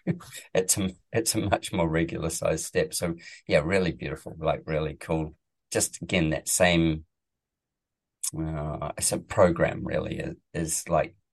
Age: 40-59